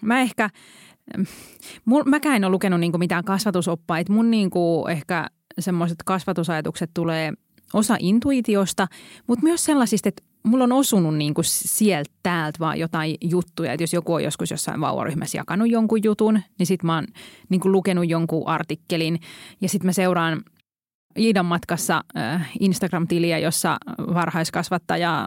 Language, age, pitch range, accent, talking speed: Finnish, 20-39, 170-215 Hz, native, 135 wpm